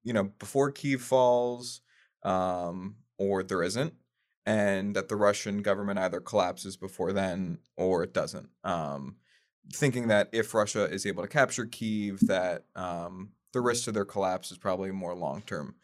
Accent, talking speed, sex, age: American, 160 wpm, male, 20-39